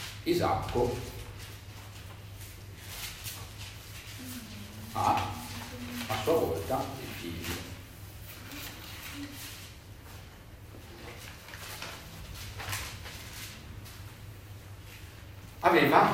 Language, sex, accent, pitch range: Italian, male, native, 100-125 Hz